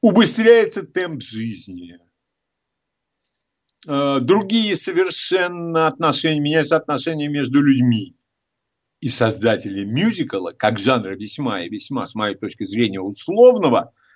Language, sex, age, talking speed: Russian, male, 60-79, 100 wpm